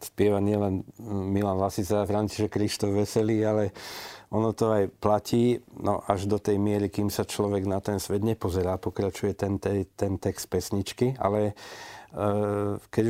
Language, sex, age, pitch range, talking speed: Slovak, male, 50-69, 100-110 Hz, 145 wpm